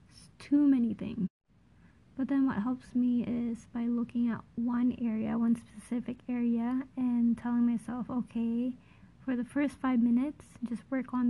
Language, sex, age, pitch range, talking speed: English, female, 20-39, 230-255 Hz, 155 wpm